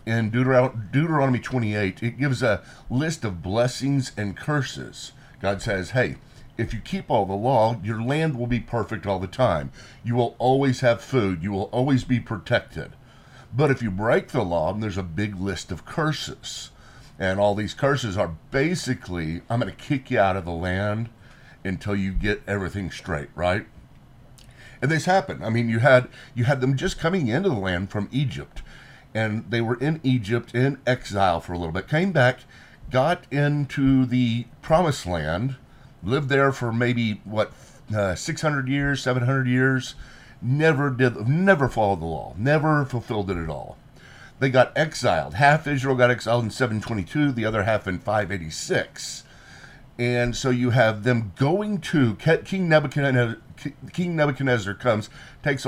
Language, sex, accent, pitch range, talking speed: English, male, American, 105-135 Hz, 170 wpm